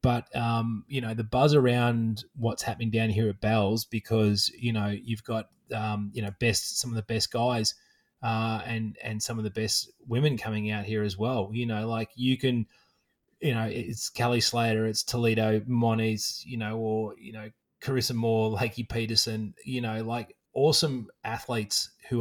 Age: 20-39